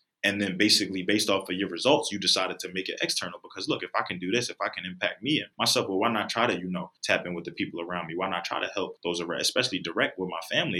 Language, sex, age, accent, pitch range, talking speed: English, male, 20-39, American, 90-105 Hz, 300 wpm